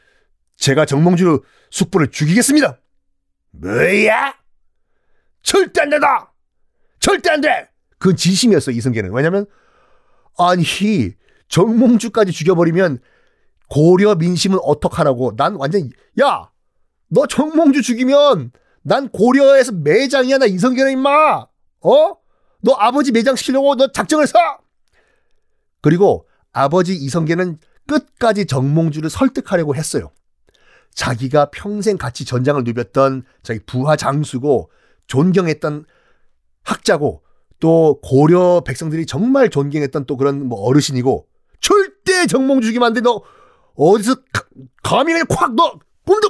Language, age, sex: Korean, 40-59, male